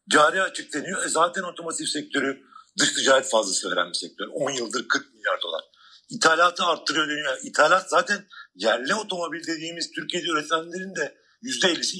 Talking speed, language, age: 145 wpm, Turkish, 50-69